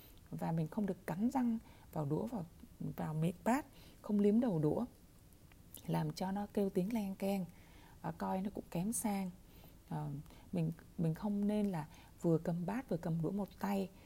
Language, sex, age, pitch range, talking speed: Vietnamese, female, 20-39, 160-205 Hz, 185 wpm